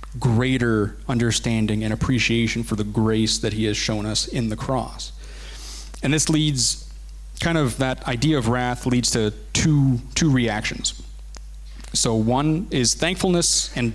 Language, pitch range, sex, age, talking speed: English, 105-140 Hz, male, 30-49, 145 wpm